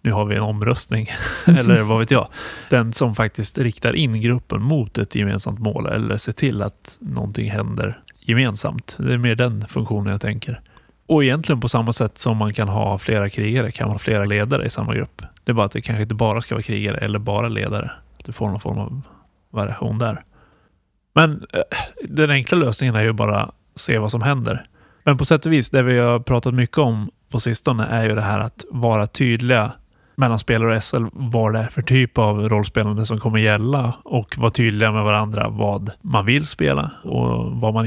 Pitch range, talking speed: 105-125 Hz, 205 wpm